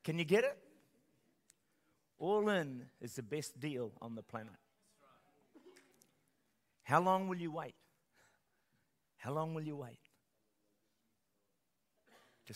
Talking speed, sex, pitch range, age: 115 wpm, male, 115-150 Hz, 50-69